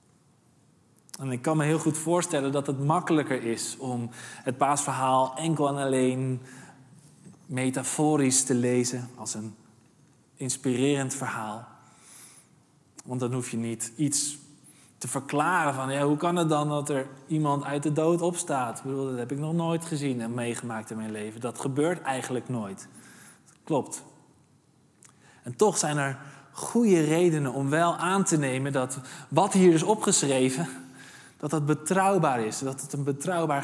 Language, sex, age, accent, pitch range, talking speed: Dutch, male, 20-39, Dutch, 130-155 Hz, 155 wpm